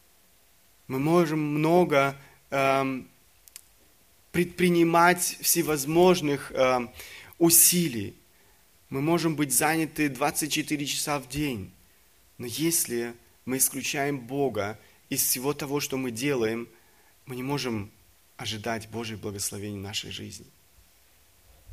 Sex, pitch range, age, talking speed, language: male, 115-155 Hz, 30-49, 100 wpm, Russian